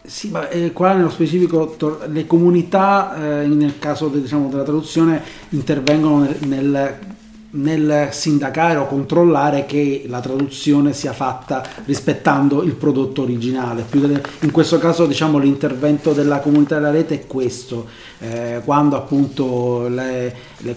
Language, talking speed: Italian, 140 wpm